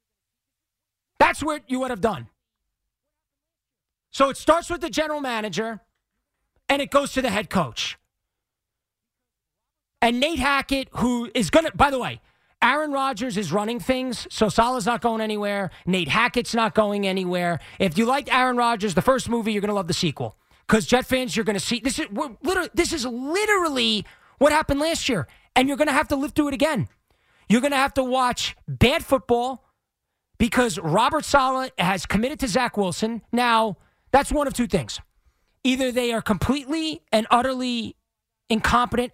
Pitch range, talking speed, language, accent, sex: 200-270 Hz, 180 wpm, English, American, male